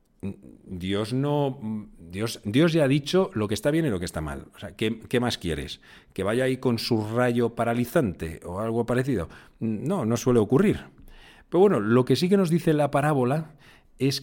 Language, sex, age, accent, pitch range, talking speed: Spanish, male, 50-69, Spanish, 100-155 Hz, 200 wpm